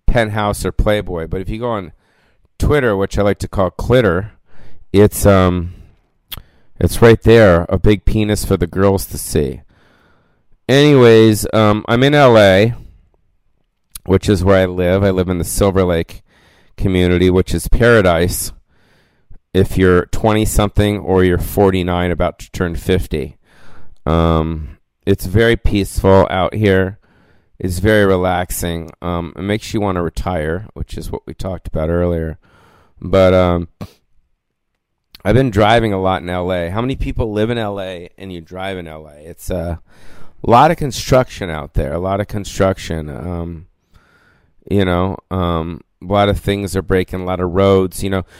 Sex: male